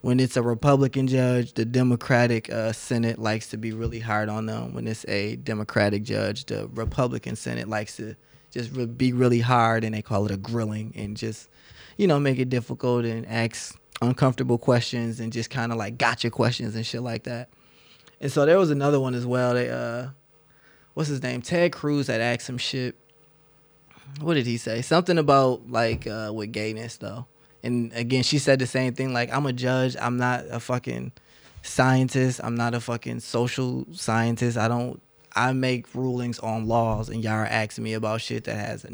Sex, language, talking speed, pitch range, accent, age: male, English, 195 wpm, 115-130 Hz, American, 20-39